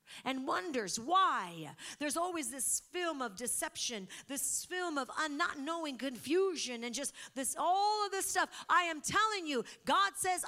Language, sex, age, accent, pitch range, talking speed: English, female, 50-69, American, 195-310 Hz, 160 wpm